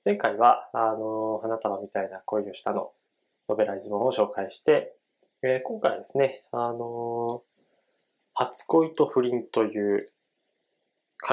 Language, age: Japanese, 20-39